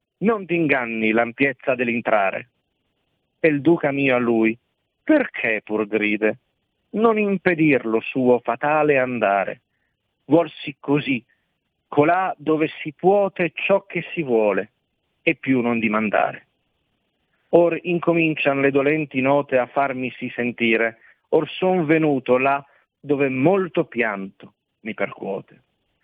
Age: 50-69